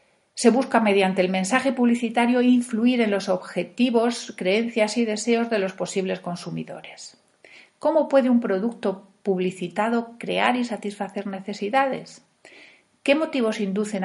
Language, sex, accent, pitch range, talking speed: Spanish, female, Spanish, 190-235 Hz, 125 wpm